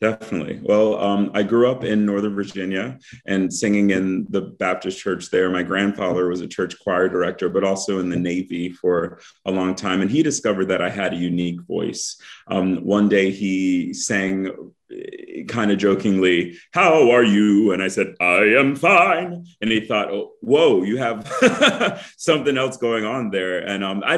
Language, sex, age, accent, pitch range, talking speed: English, male, 30-49, American, 90-105 Hz, 180 wpm